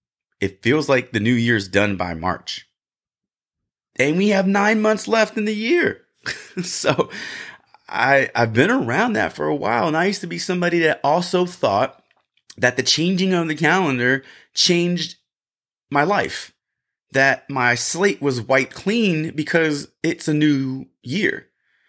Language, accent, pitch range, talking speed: English, American, 105-155 Hz, 155 wpm